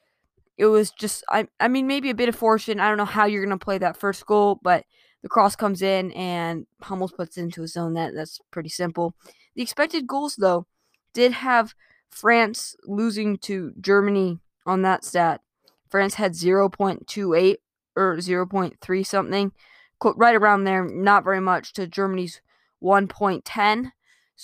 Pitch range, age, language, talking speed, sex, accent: 180-220 Hz, 20-39, English, 160 wpm, female, American